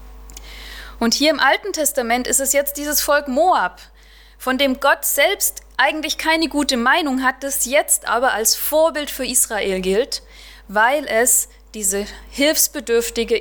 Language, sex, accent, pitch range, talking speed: German, female, German, 205-275 Hz, 145 wpm